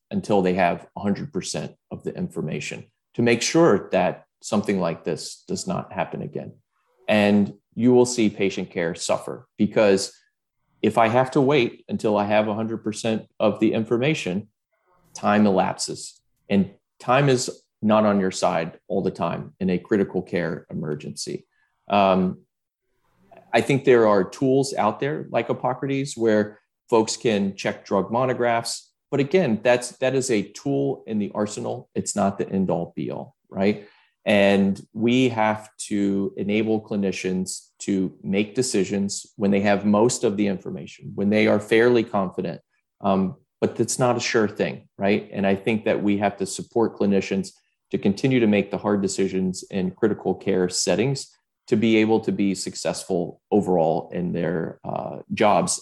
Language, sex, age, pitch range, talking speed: English, male, 30-49, 100-120 Hz, 160 wpm